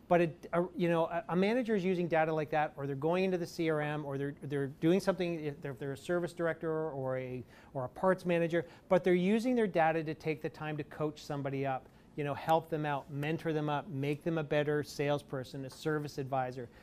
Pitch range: 145-170 Hz